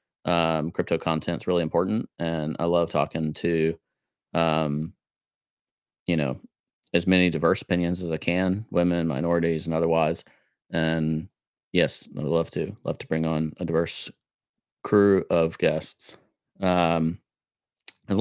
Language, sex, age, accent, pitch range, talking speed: English, male, 30-49, American, 80-95 Hz, 135 wpm